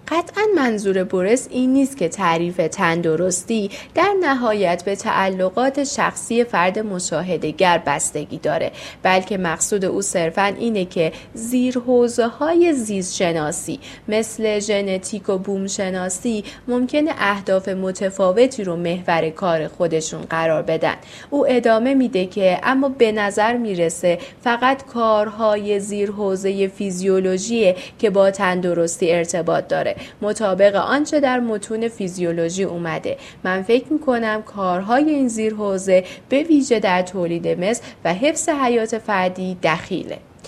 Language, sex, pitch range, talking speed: Persian, female, 185-250 Hz, 115 wpm